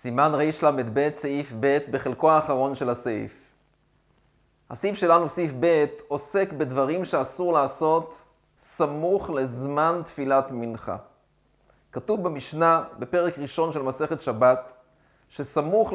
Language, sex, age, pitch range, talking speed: Hebrew, male, 30-49, 140-170 Hz, 110 wpm